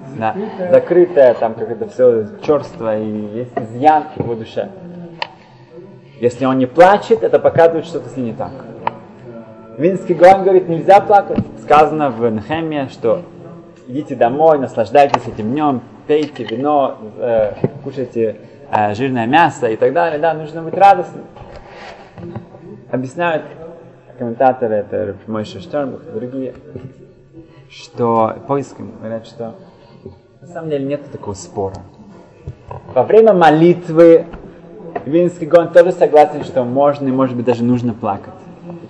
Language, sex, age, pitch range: Russian, male, 20-39, 120-170 Hz